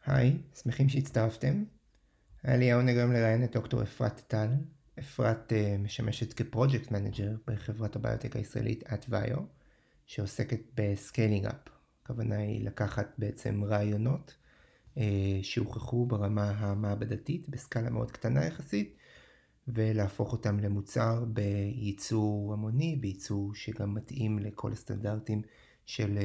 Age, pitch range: 30-49, 105-125 Hz